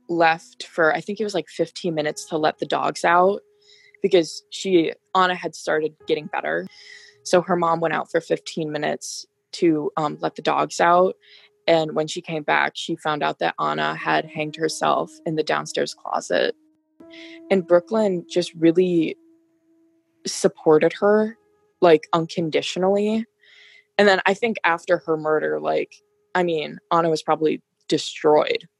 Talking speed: 155 wpm